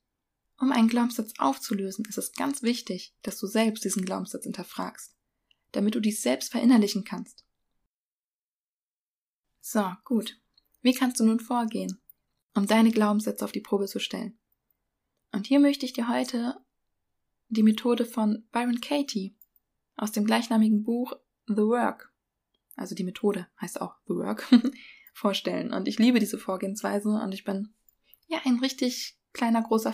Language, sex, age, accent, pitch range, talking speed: German, female, 20-39, German, 210-245 Hz, 145 wpm